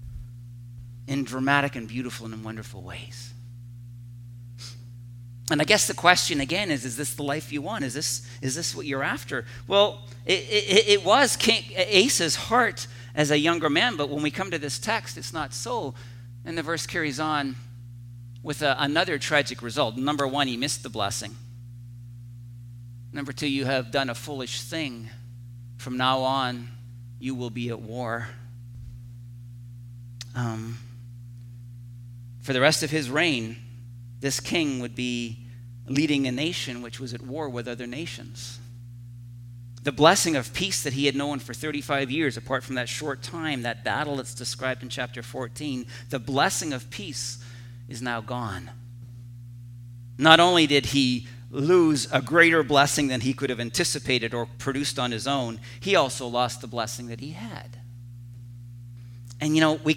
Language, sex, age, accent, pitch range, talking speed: English, male, 40-59, American, 120-140 Hz, 165 wpm